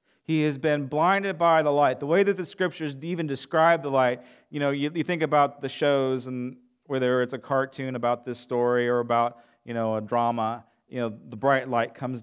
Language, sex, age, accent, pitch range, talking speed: English, male, 40-59, American, 120-160 Hz, 215 wpm